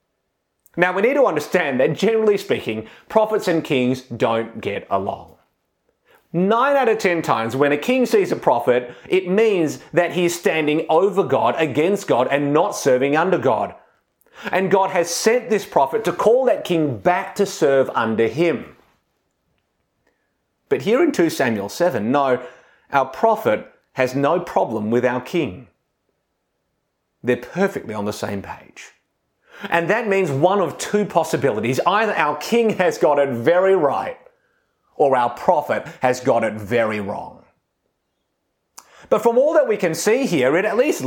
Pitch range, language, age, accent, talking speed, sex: 130-215 Hz, English, 30-49, Australian, 160 wpm, male